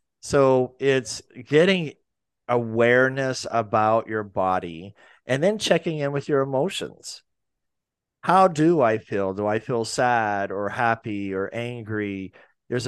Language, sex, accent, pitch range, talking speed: English, male, American, 110-135 Hz, 125 wpm